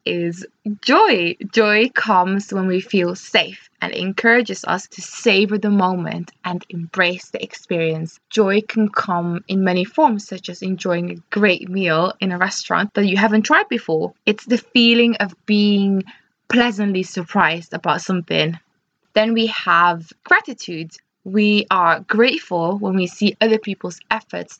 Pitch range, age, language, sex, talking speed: 175-215 Hz, 20-39, English, female, 150 wpm